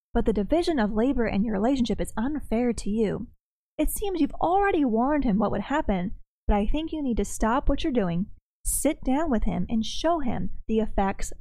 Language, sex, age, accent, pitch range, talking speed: English, female, 20-39, American, 205-280 Hz, 210 wpm